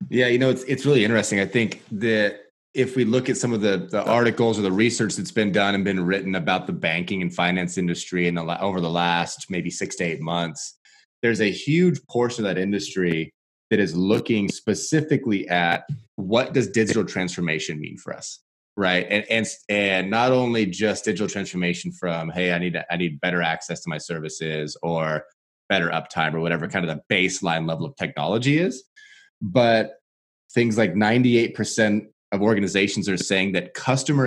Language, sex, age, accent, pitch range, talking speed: English, male, 30-49, American, 90-115 Hz, 185 wpm